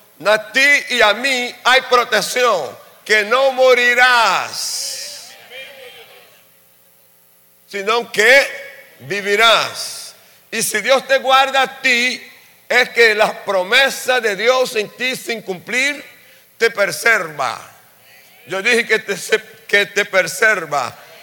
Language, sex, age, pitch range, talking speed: Spanish, male, 60-79, 195-250 Hz, 110 wpm